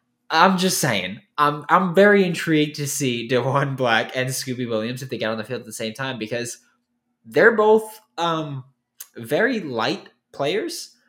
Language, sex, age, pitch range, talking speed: English, male, 20-39, 120-170 Hz, 170 wpm